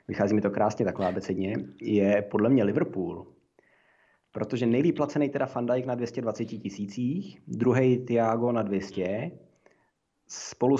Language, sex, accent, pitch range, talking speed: Czech, male, native, 105-120 Hz, 130 wpm